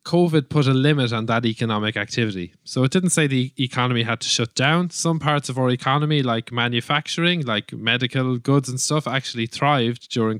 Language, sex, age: English, male, 20-39